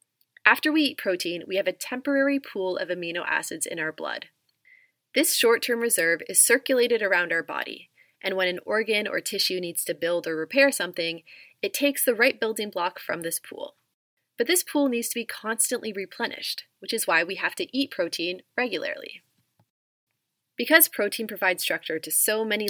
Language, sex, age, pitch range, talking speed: English, female, 30-49, 175-240 Hz, 180 wpm